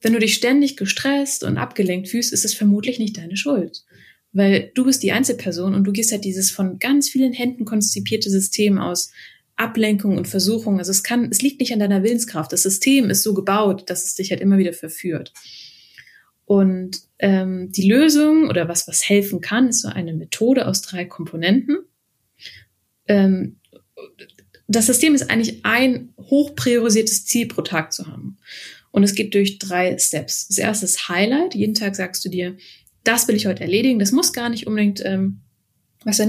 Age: 20-39